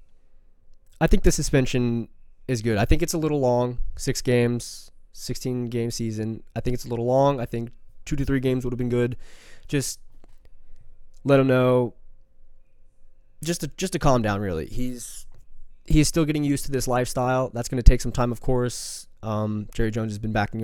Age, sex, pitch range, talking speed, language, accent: 20-39, male, 110-130 Hz, 185 wpm, English, American